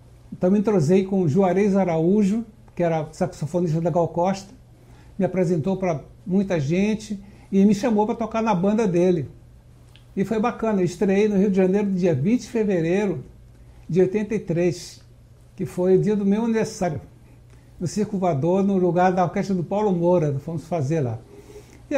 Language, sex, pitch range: Portuguese, male, 160-195 Hz